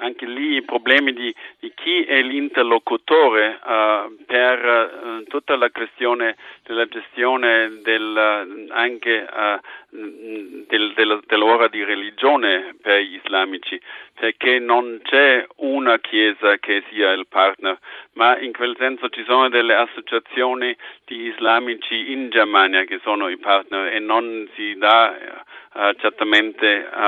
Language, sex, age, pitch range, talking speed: Italian, male, 50-69, 100-115 Hz, 115 wpm